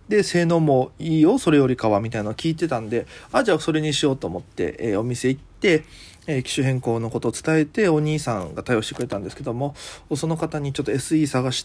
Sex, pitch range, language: male, 115-160 Hz, Japanese